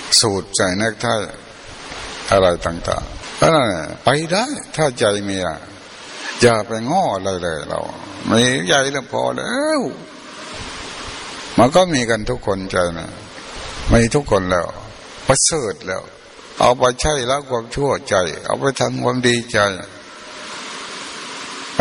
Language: Thai